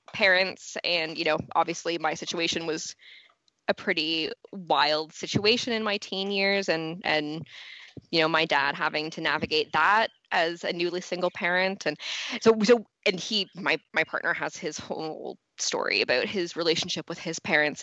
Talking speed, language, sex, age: 165 wpm, English, female, 20-39